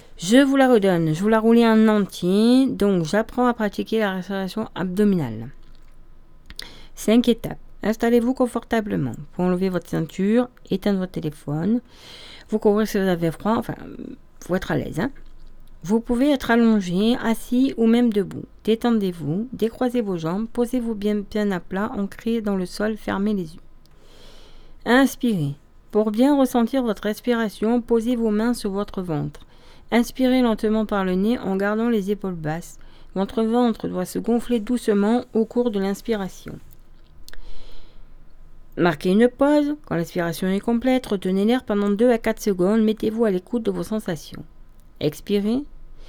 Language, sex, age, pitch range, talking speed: French, female, 40-59, 185-235 Hz, 150 wpm